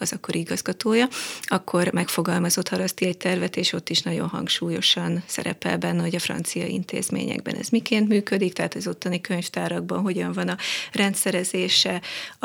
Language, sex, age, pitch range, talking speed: Hungarian, female, 30-49, 175-195 Hz, 145 wpm